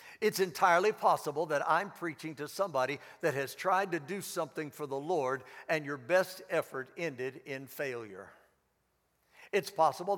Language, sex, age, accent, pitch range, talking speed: English, male, 60-79, American, 150-195 Hz, 155 wpm